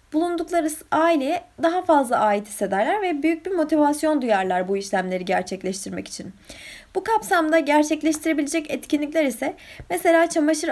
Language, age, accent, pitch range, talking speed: Turkish, 20-39, native, 225-305 Hz, 125 wpm